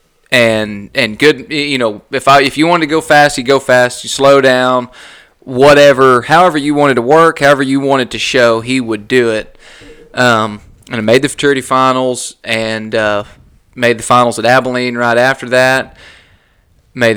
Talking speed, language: 180 wpm, English